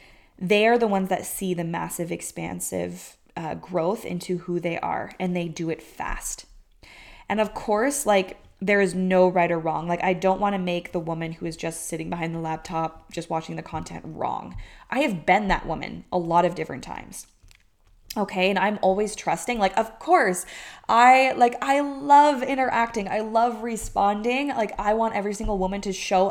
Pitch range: 170-205 Hz